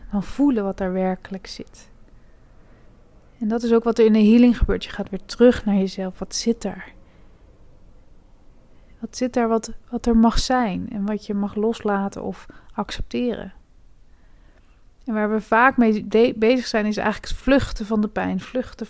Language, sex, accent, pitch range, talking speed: Dutch, female, Dutch, 205-235 Hz, 175 wpm